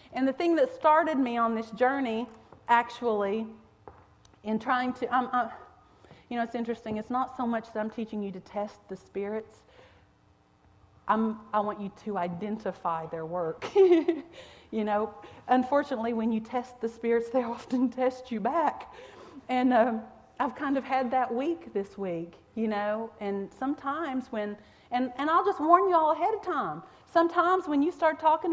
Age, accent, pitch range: 40-59, American, 230-315 Hz